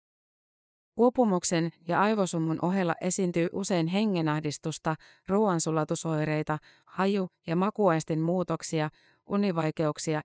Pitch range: 155-185 Hz